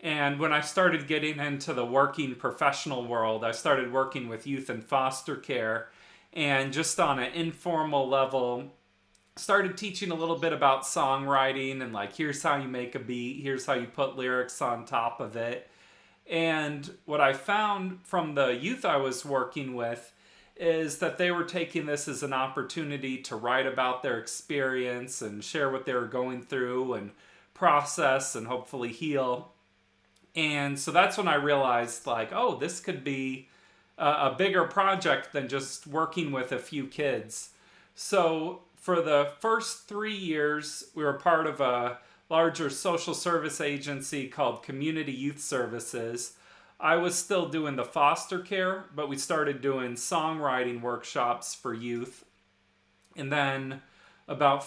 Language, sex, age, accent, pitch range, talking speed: English, male, 30-49, American, 125-165 Hz, 155 wpm